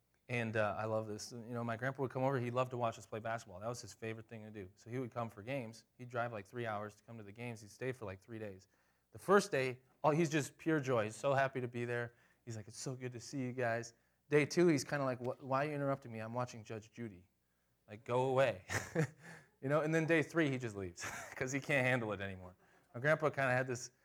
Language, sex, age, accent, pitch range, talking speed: English, male, 20-39, American, 105-130 Hz, 280 wpm